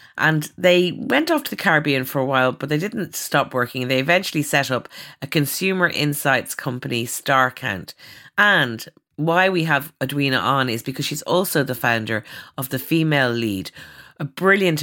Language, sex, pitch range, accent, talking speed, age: English, female, 120-155 Hz, Irish, 170 wpm, 30-49